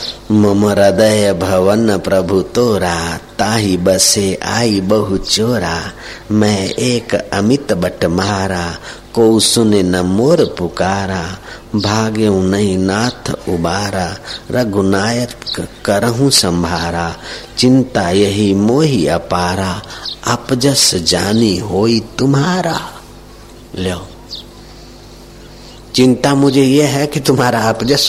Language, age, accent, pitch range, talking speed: Hindi, 50-69, native, 95-120 Hz, 90 wpm